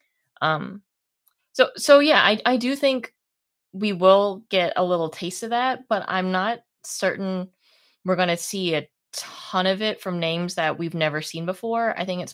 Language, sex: English, female